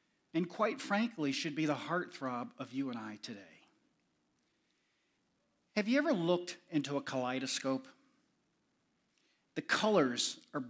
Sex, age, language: male, 50-69, English